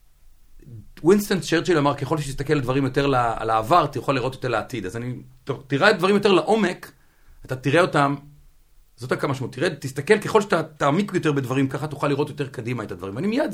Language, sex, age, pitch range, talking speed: Hebrew, male, 40-59, 105-155 Hz, 180 wpm